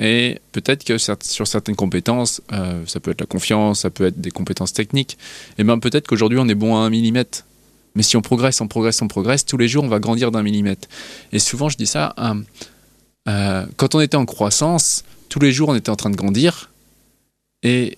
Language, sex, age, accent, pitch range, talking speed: French, male, 20-39, French, 110-135 Hz, 220 wpm